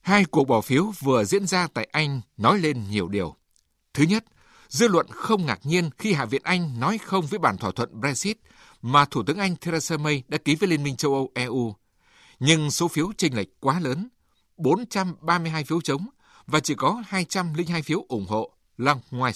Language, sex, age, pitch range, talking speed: Vietnamese, male, 60-79, 125-180 Hz, 200 wpm